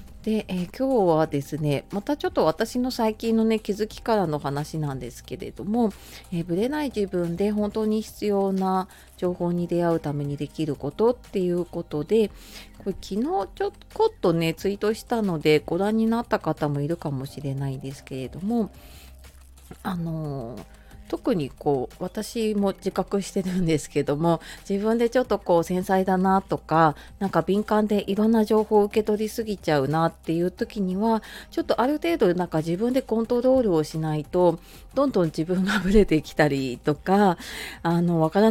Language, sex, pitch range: Japanese, female, 160-220 Hz